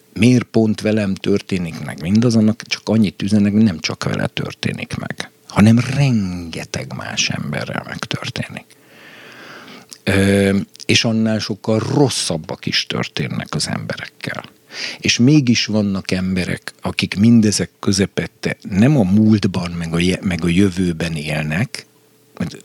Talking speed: 115 wpm